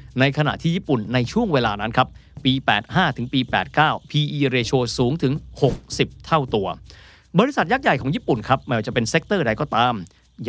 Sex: male